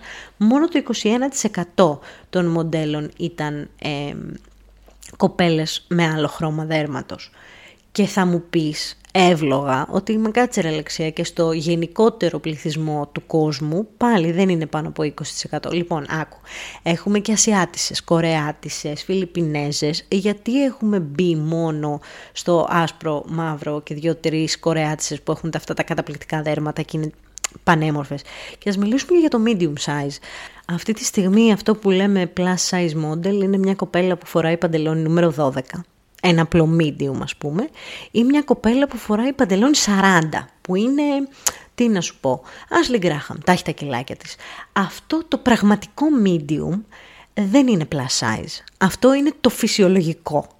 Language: Greek